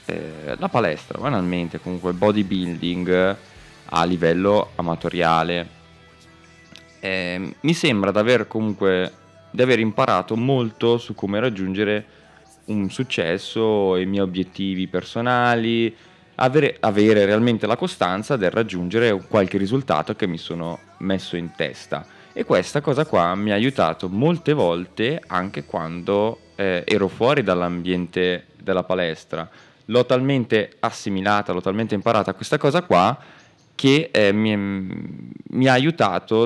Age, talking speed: 20-39, 125 wpm